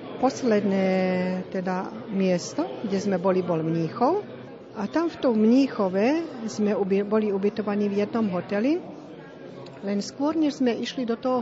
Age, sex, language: 40-59, female, Slovak